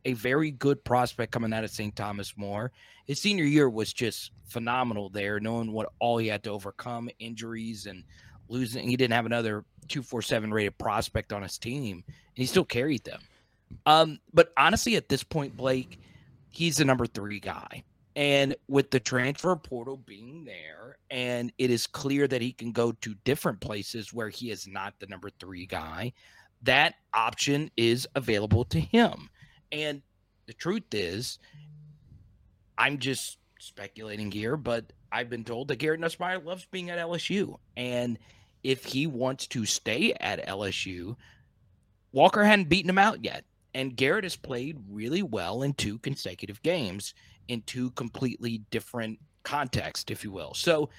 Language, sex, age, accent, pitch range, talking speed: English, male, 30-49, American, 105-140 Hz, 165 wpm